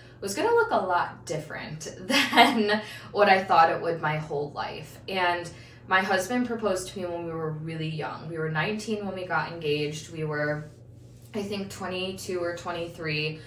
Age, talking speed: 20-39, 180 wpm